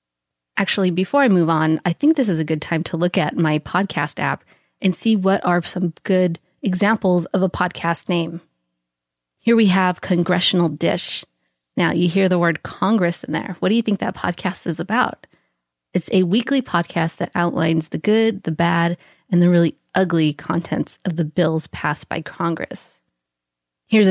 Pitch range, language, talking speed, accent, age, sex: 165-195 Hz, English, 180 wpm, American, 30-49, female